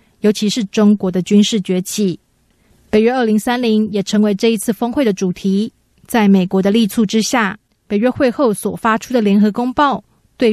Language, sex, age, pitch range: Chinese, female, 30-49, 200-245 Hz